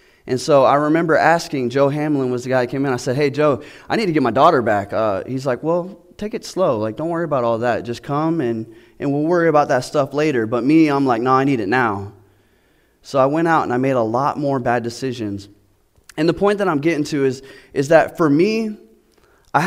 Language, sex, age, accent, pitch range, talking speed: English, male, 20-39, American, 130-175 Hz, 250 wpm